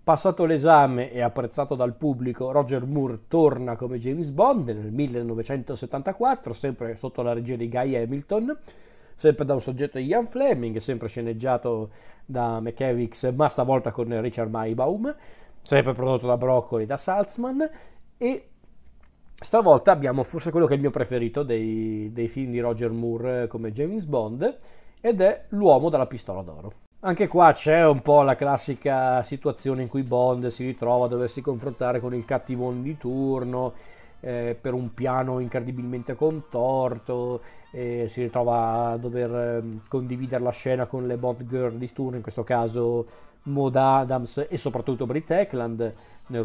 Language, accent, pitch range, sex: Italian, native, 120-140 Hz, male